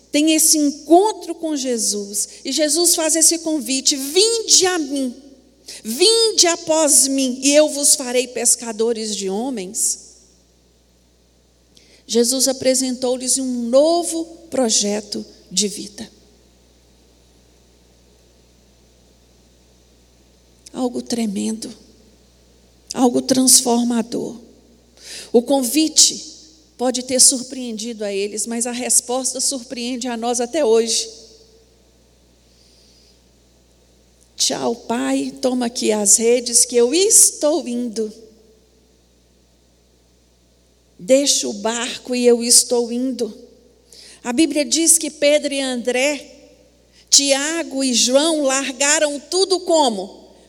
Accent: Brazilian